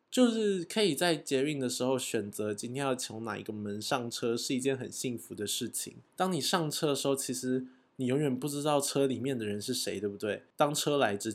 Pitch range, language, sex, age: 115-155 Hz, Chinese, male, 20-39